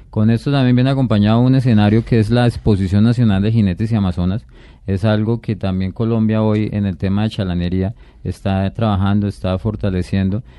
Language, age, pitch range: Spanish, 30-49, 95-110 Hz